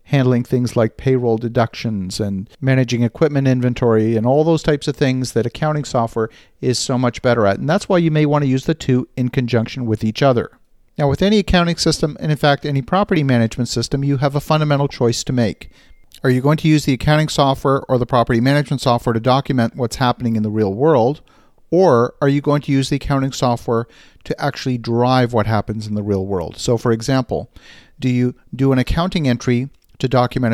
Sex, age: male, 40-59